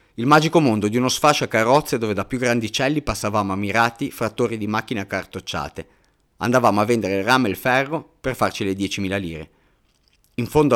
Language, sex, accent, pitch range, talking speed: Italian, male, native, 100-130 Hz, 195 wpm